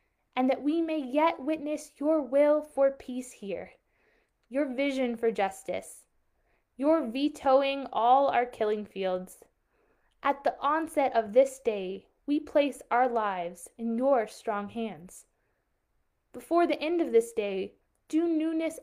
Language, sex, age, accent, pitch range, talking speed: English, female, 20-39, American, 220-275 Hz, 135 wpm